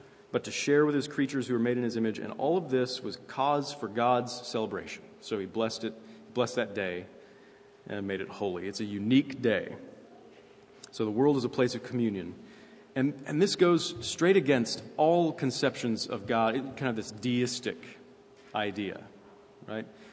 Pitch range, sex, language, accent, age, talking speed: 110-135 Hz, male, English, American, 30-49, 180 wpm